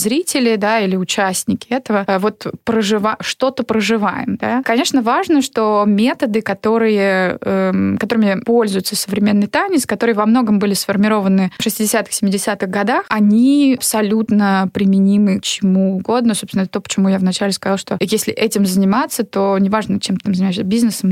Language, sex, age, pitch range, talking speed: Russian, female, 20-39, 200-230 Hz, 150 wpm